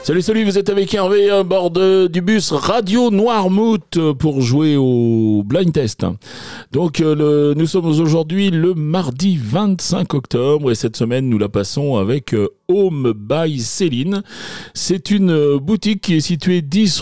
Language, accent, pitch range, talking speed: English, French, 110-165 Hz, 150 wpm